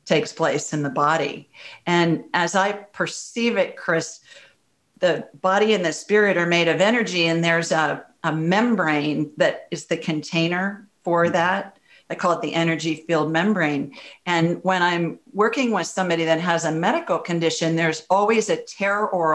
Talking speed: 165 wpm